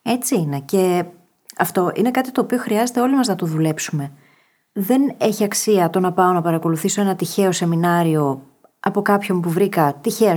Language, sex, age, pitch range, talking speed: Greek, female, 30-49, 170-225 Hz, 175 wpm